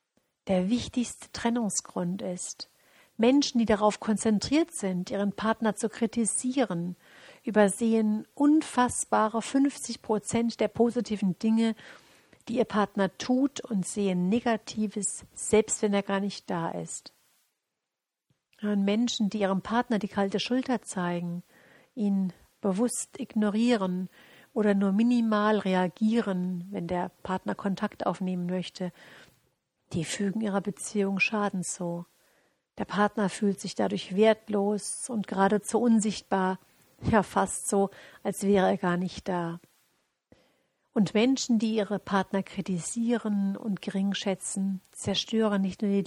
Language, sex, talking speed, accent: German, female, 115 wpm, German